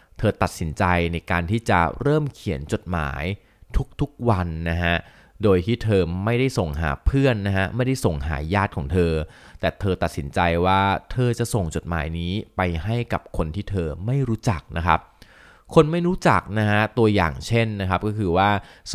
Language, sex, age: Thai, male, 30-49